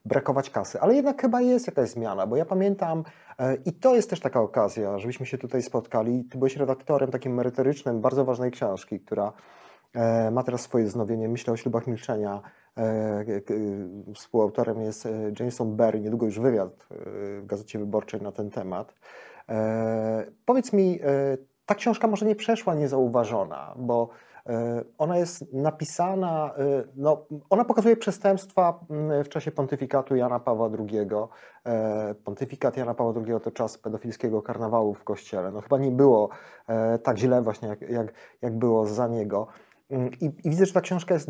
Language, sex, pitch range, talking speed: Polish, male, 115-155 Hz, 160 wpm